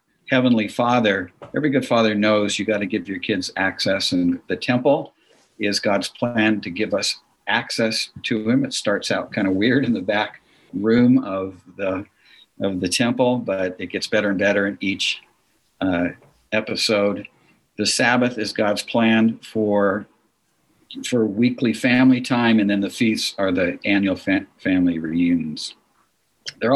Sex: male